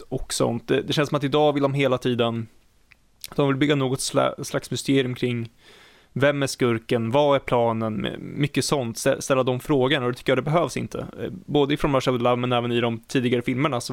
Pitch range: 115-135 Hz